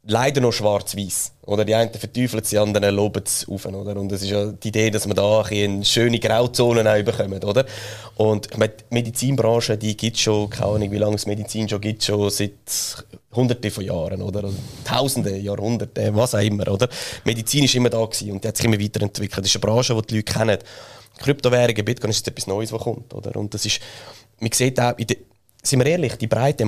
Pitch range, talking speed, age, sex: 105-120 Hz, 210 wpm, 20-39, male